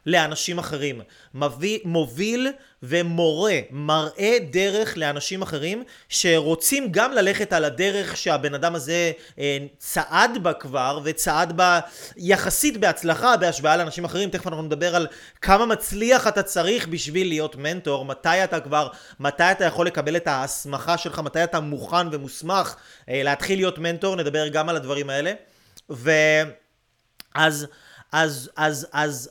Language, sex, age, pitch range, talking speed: Hebrew, male, 30-49, 140-175 Hz, 130 wpm